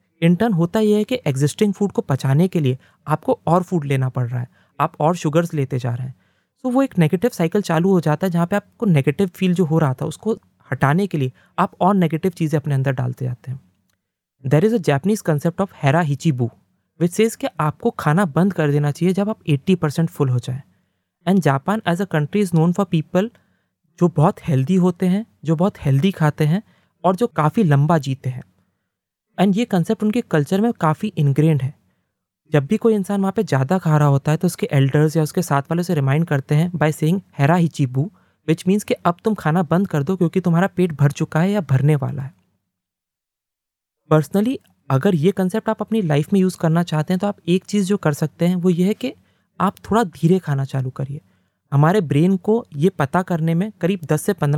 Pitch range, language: 140-190 Hz, English